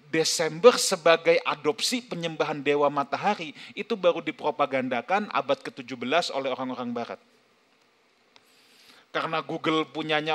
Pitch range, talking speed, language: 160-235 Hz, 100 wpm, Indonesian